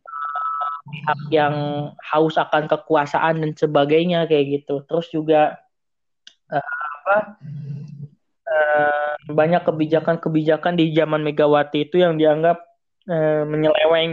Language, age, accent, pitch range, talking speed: Indonesian, 20-39, native, 155-190 Hz, 100 wpm